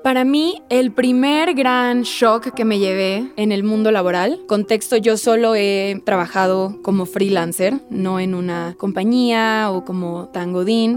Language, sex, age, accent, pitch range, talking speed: Spanish, female, 20-39, Mexican, 205-245 Hz, 155 wpm